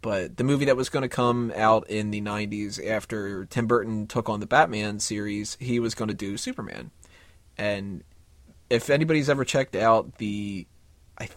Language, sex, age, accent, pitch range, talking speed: English, male, 30-49, American, 100-120 Hz, 180 wpm